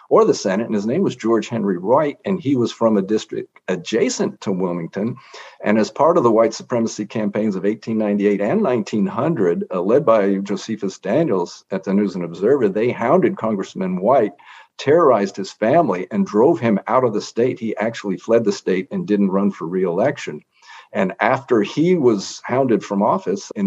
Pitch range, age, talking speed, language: 100-130 Hz, 50-69, 185 wpm, English